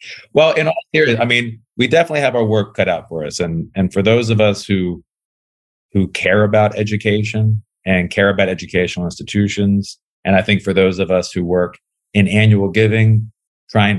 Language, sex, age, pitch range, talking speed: English, male, 40-59, 90-110 Hz, 190 wpm